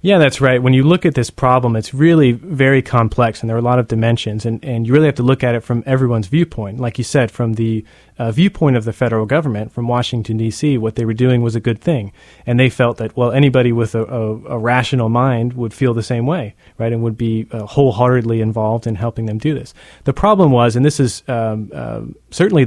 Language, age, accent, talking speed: English, 30-49, American, 240 wpm